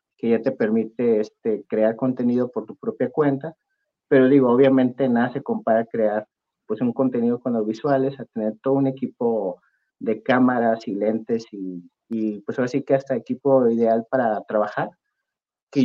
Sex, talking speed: male, 175 wpm